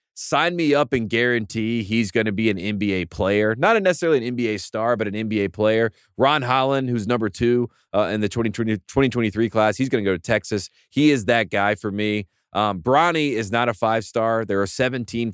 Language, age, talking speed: English, 30-49, 205 wpm